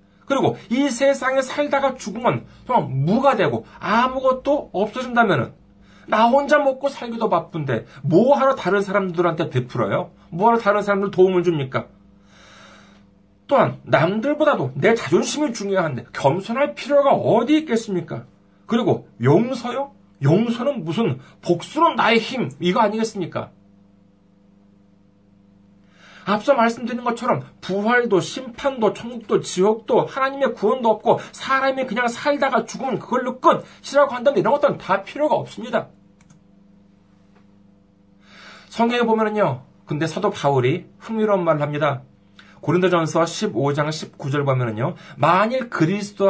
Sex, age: male, 40-59